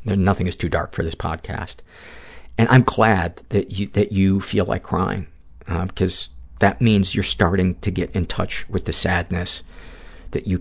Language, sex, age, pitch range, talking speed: English, male, 50-69, 75-100 Hz, 180 wpm